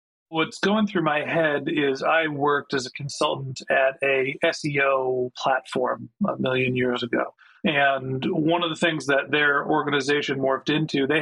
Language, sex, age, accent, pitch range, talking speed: English, male, 40-59, American, 135-165 Hz, 160 wpm